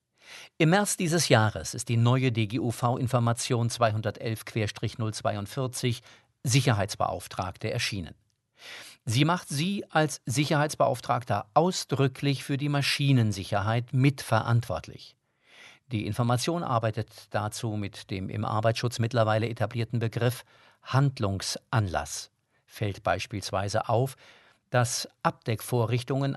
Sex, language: male, German